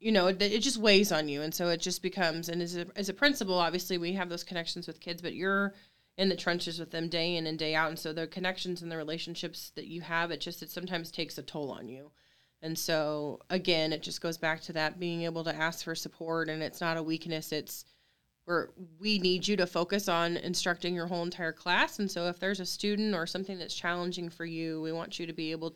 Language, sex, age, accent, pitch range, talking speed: English, female, 30-49, American, 160-185 Hz, 250 wpm